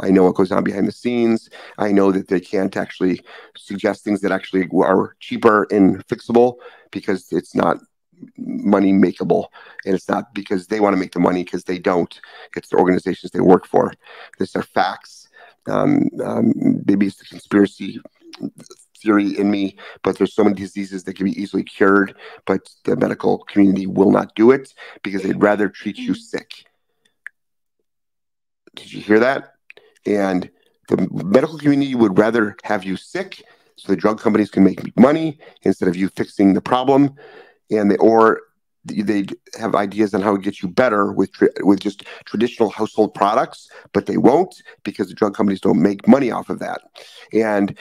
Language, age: English, 30-49